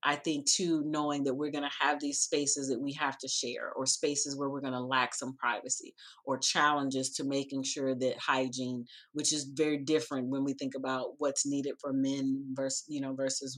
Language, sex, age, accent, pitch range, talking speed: English, female, 30-49, American, 150-180 Hz, 205 wpm